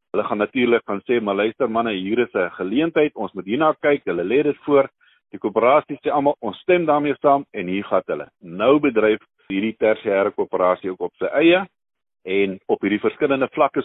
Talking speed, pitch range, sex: 200 wpm, 105-150 Hz, male